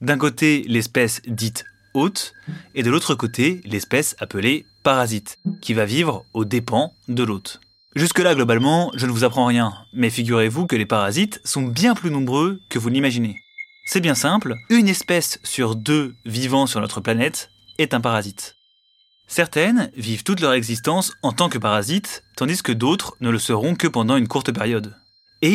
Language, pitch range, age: French, 115-170 Hz, 20-39